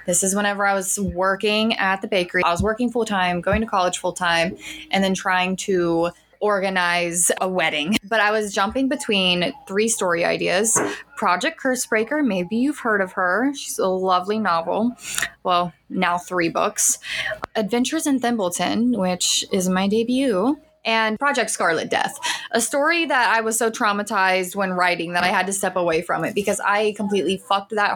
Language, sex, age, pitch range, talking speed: English, female, 20-39, 180-220 Hz, 175 wpm